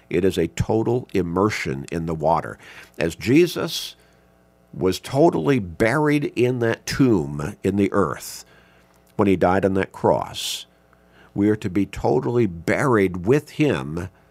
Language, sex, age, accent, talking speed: English, male, 50-69, American, 140 wpm